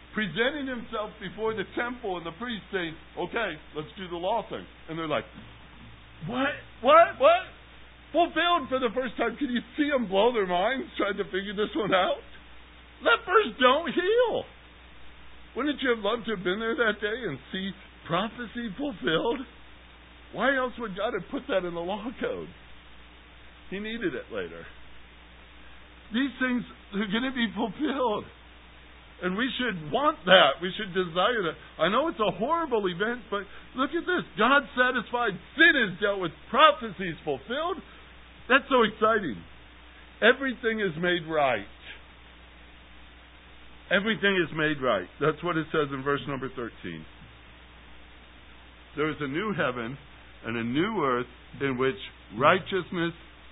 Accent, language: American, English